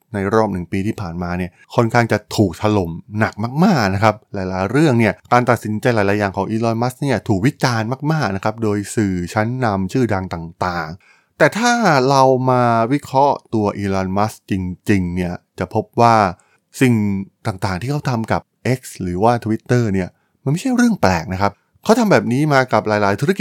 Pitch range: 95-130 Hz